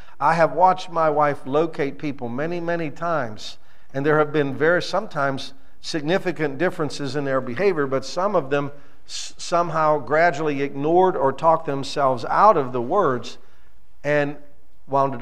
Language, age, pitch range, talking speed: English, 50-69, 130-175 Hz, 150 wpm